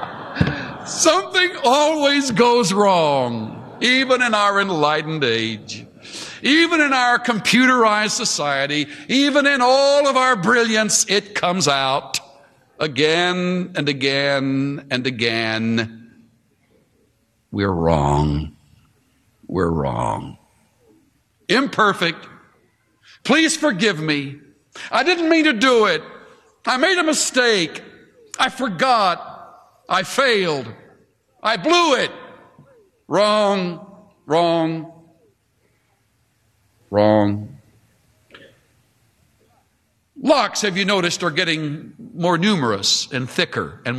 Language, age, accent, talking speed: English, 60-79, American, 90 wpm